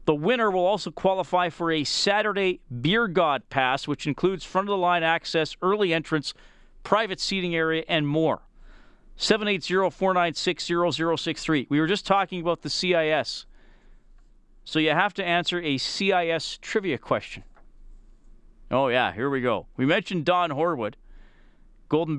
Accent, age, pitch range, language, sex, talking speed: American, 40-59, 125-170 Hz, English, male, 135 wpm